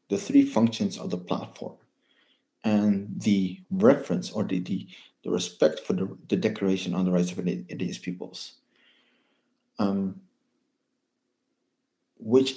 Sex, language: male, English